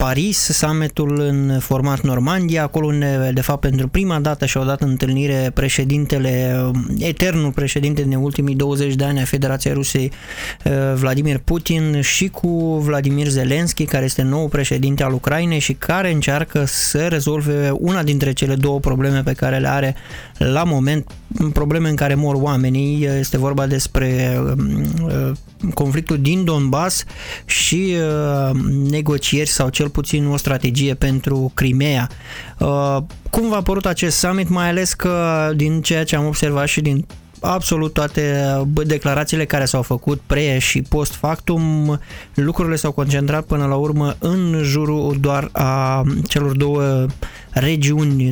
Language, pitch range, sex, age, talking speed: Romanian, 135-160 Hz, male, 20-39, 140 wpm